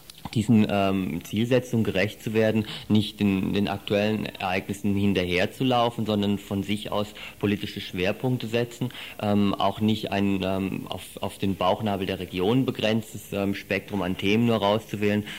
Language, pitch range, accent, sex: German, 95-110 Hz, German, male